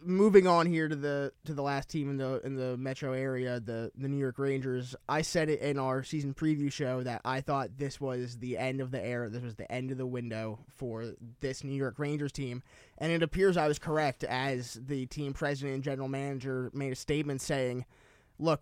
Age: 20-39